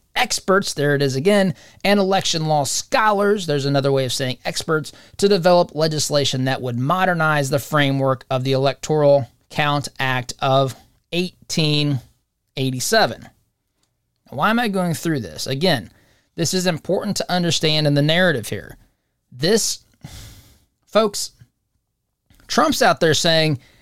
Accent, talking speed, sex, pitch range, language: American, 130 wpm, male, 140-200 Hz, English